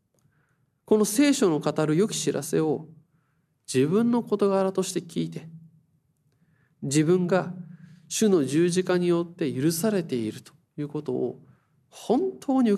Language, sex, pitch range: Japanese, male, 135-165 Hz